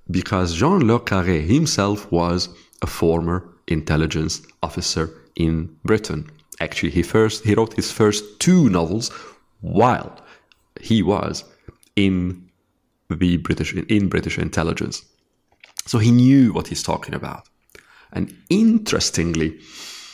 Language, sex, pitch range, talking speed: Arabic, male, 85-110 Hz, 115 wpm